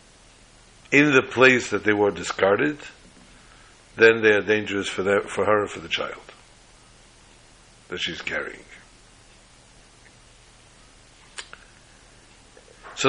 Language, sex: English, male